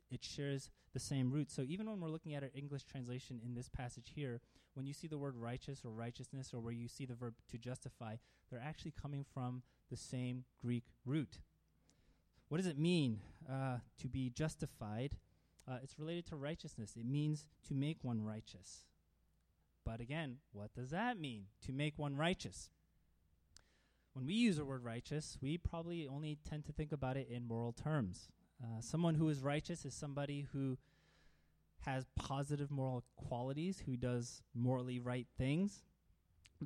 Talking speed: 170 wpm